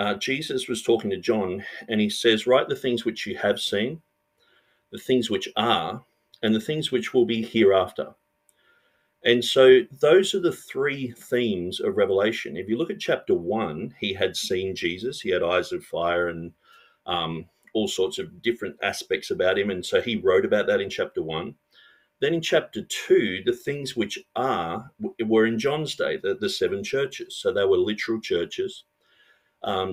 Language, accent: English, Australian